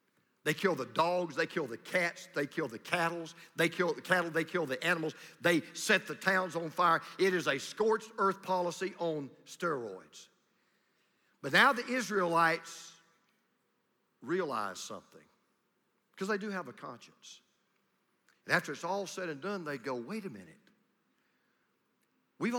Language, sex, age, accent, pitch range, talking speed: English, male, 50-69, American, 170-220 Hz, 155 wpm